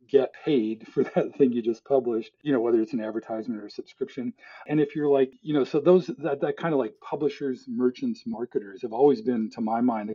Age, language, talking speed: 40-59, English, 235 wpm